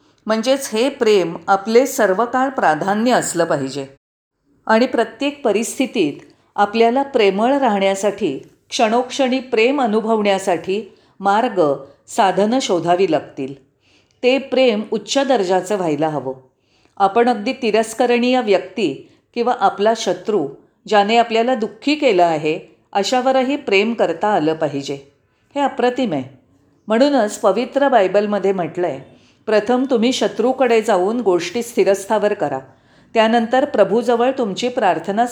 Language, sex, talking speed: Marathi, female, 110 wpm